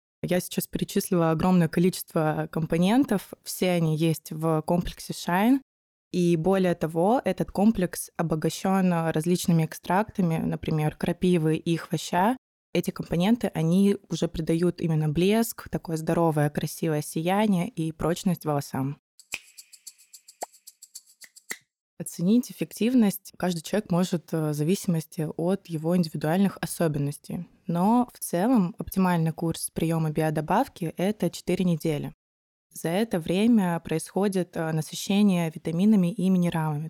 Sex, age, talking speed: female, 20-39, 110 wpm